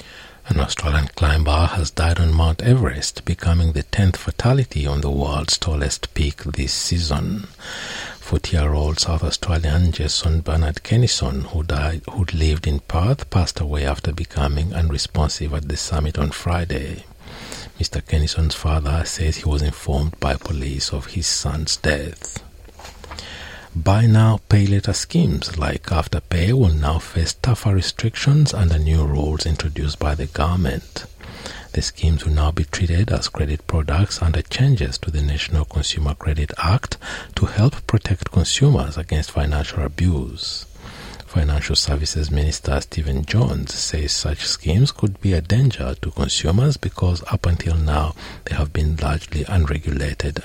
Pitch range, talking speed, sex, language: 75-90 Hz, 140 wpm, male, English